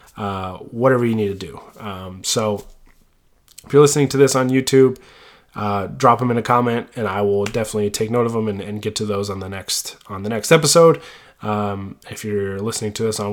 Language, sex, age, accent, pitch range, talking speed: English, male, 20-39, American, 105-130 Hz, 215 wpm